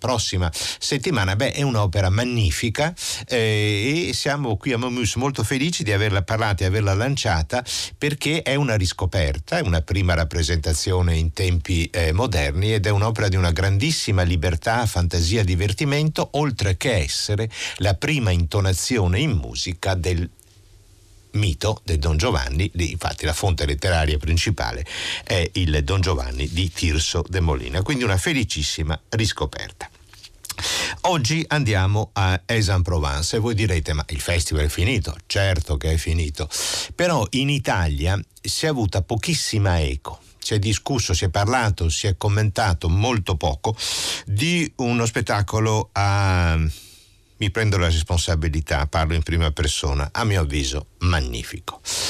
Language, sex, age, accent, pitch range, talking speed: Italian, male, 50-69, native, 80-110 Hz, 145 wpm